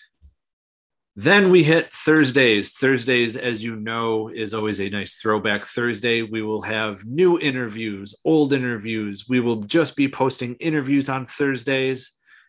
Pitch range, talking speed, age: 110-140 Hz, 140 wpm, 30-49